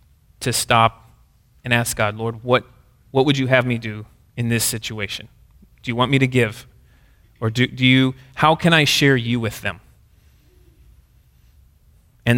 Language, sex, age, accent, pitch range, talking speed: English, male, 30-49, American, 115-155 Hz, 165 wpm